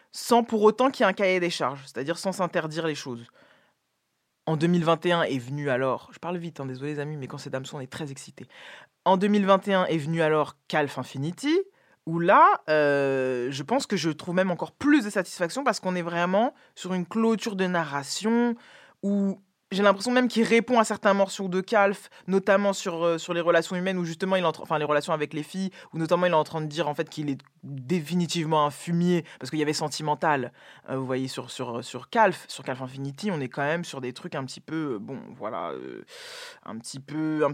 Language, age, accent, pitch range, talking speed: French, 20-39, French, 150-195 Hz, 225 wpm